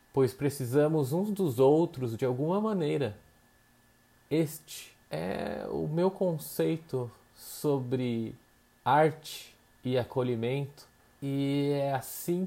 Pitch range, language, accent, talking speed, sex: 115-155 Hz, Portuguese, Brazilian, 95 wpm, male